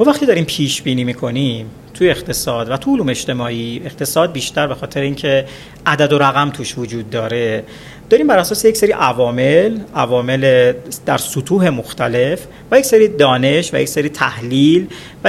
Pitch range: 130-180 Hz